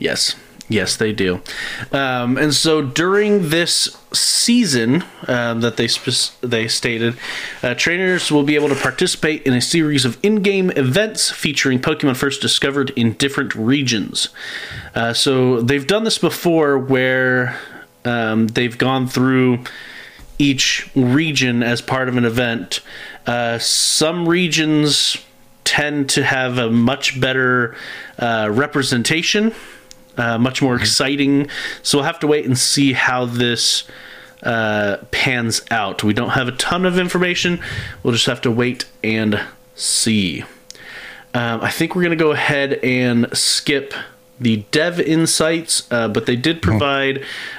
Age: 30-49